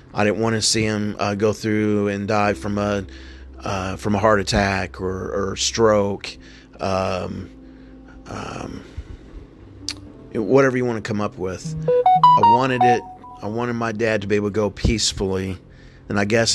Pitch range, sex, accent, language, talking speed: 95-115 Hz, male, American, English, 165 wpm